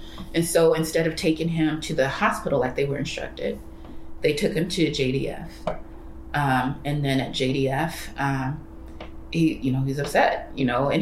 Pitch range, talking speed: 135-170 Hz, 175 wpm